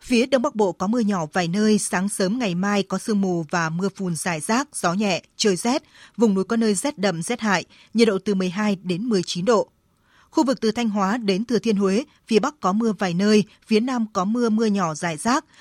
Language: Vietnamese